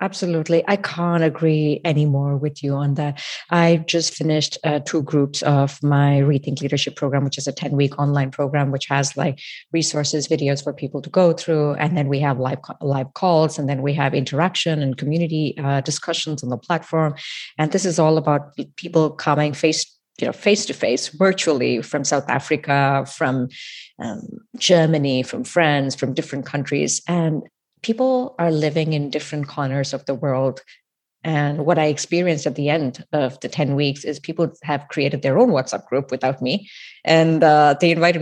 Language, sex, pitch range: English, female, 140-170 Hz